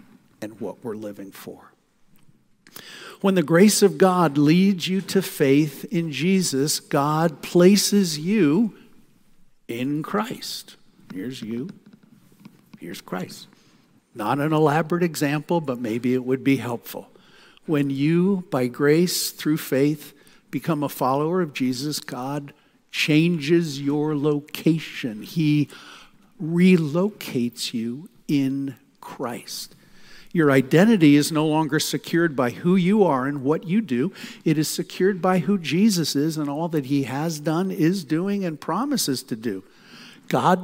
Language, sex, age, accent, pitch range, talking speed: English, male, 60-79, American, 140-185 Hz, 130 wpm